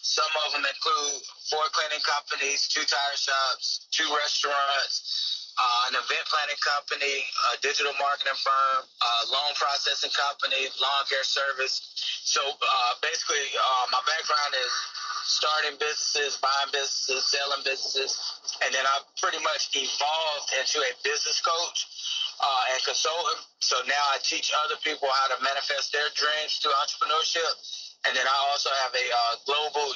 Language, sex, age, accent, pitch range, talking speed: English, male, 30-49, American, 135-150 Hz, 150 wpm